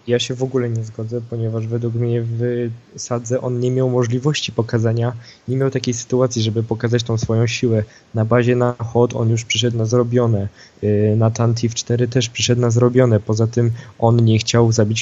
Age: 20-39